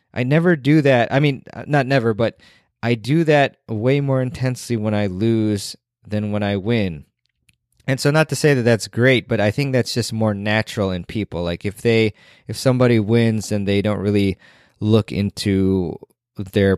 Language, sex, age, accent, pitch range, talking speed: English, male, 20-39, American, 100-130 Hz, 185 wpm